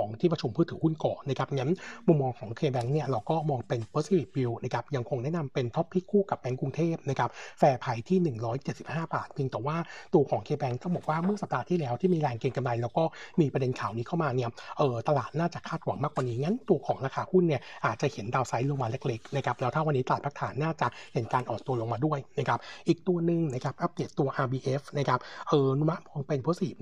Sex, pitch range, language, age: male, 130-160 Hz, Thai, 60-79